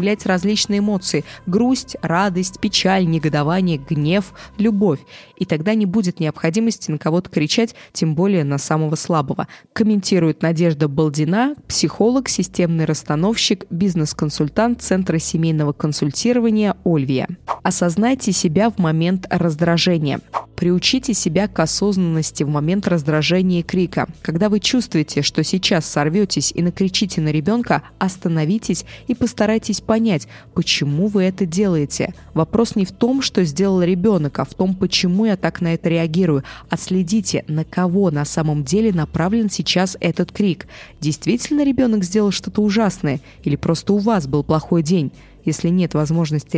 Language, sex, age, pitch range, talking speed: Russian, female, 20-39, 160-205 Hz, 135 wpm